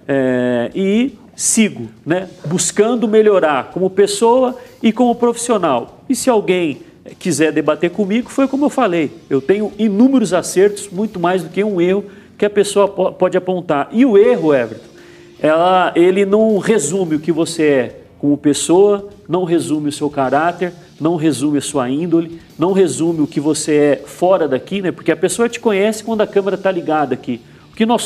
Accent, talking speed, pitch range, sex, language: Brazilian, 175 wpm, 155-215 Hz, male, Portuguese